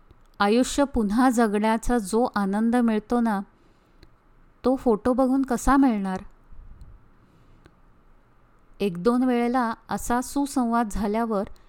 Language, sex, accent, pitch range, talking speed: Marathi, female, native, 220-270 Hz, 90 wpm